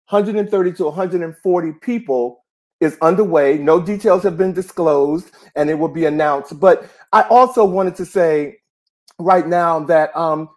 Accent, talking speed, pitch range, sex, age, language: American, 150 wpm, 165-220 Hz, male, 50-69, English